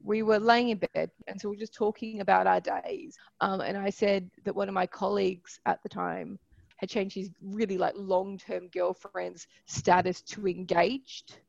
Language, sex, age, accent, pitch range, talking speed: English, female, 20-39, Australian, 185-215 Hz, 185 wpm